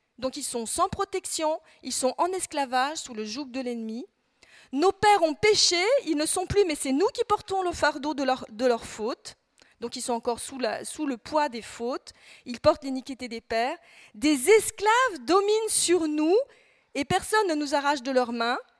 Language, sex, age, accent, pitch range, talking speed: French, female, 40-59, French, 240-330 Hz, 200 wpm